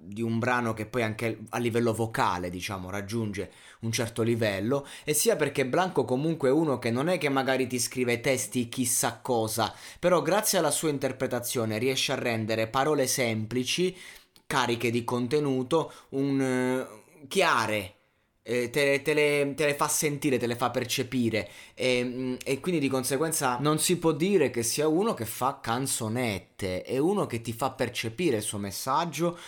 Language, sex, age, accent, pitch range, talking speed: Italian, male, 20-39, native, 115-135 Hz, 165 wpm